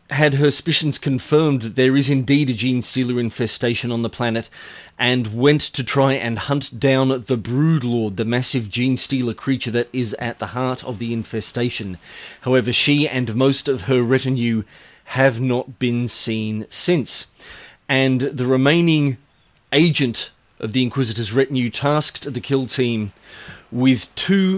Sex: male